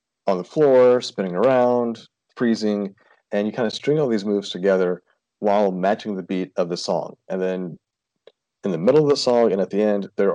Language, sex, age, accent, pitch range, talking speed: English, male, 40-59, American, 95-110 Hz, 205 wpm